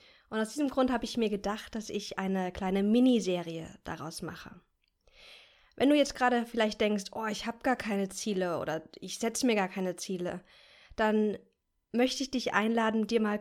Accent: German